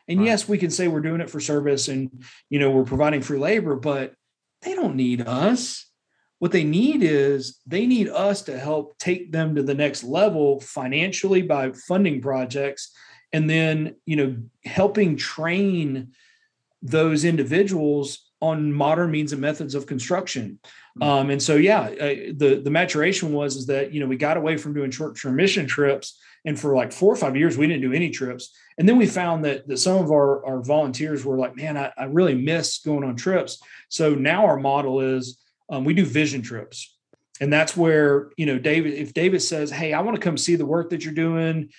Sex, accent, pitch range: male, American, 140-170 Hz